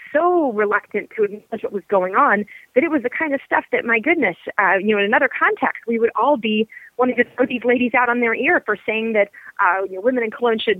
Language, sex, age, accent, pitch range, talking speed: English, female, 30-49, American, 205-280 Hz, 260 wpm